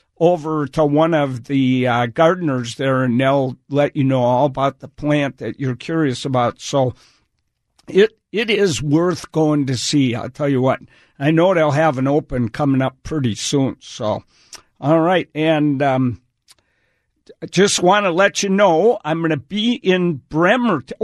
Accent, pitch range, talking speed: American, 135-175 Hz, 175 wpm